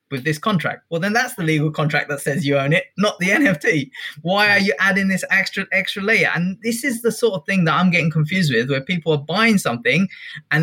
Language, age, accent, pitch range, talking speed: English, 20-39, British, 140-185 Hz, 245 wpm